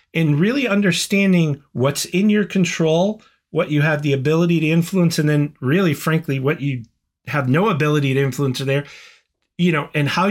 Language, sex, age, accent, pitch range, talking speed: English, male, 40-59, American, 135-175 Hz, 175 wpm